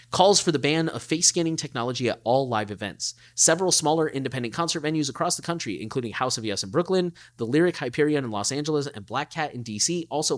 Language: English